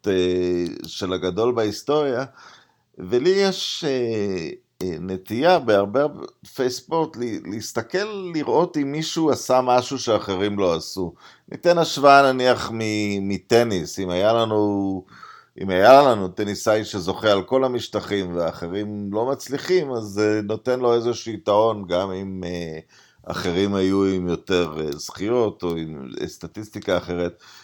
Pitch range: 90-115 Hz